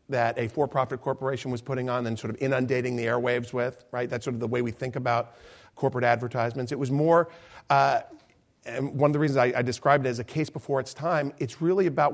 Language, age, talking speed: English, 40-59, 230 wpm